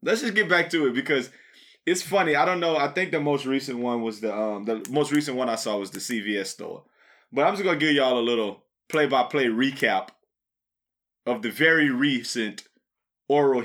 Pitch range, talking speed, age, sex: 120-150 Hz, 210 wpm, 20-39, male